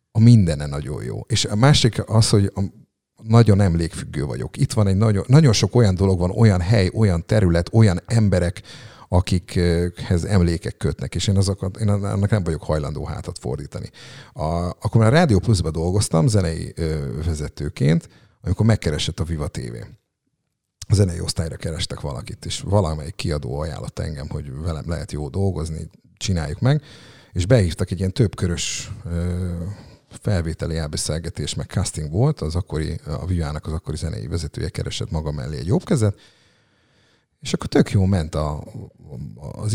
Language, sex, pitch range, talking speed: Hungarian, male, 80-110 Hz, 155 wpm